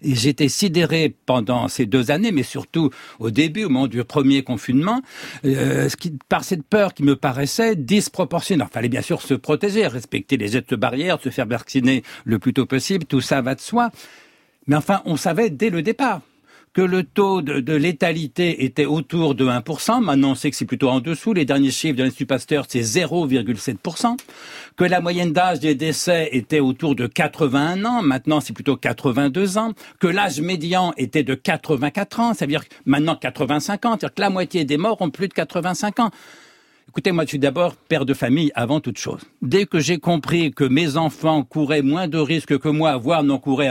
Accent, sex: French, male